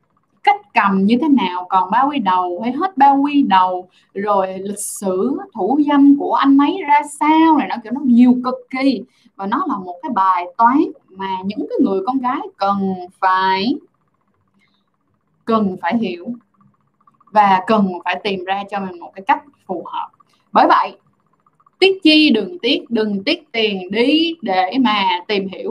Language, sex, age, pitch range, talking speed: Vietnamese, female, 10-29, 200-285 Hz, 175 wpm